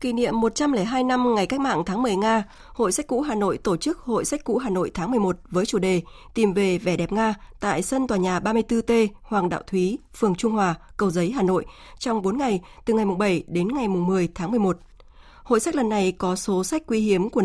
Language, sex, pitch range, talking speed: Vietnamese, female, 190-235 Hz, 235 wpm